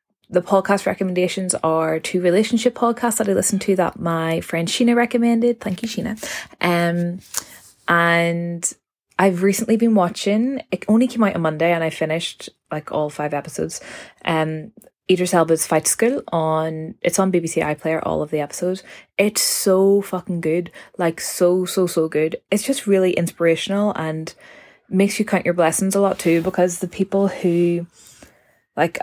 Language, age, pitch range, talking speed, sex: English, 20-39, 155-195 Hz, 165 wpm, female